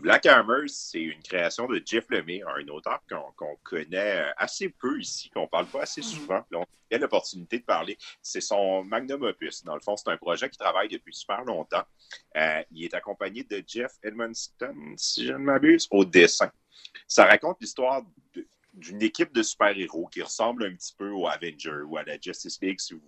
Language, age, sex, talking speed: French, 40-59, male, 205 wpm